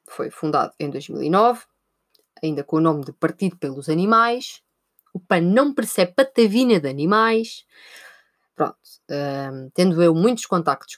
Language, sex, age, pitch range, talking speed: Portuguese, female, 20-39, 145-185 Hz, 135 wpm